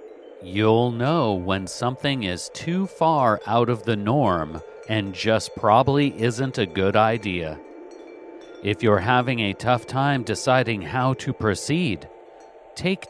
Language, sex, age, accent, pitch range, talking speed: English, male, 40-59, American, 105-140 Hz, 135 wpm